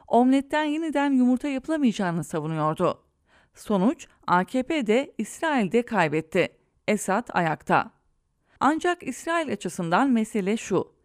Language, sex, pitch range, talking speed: English, female, 175-260 Hz, 100 wpm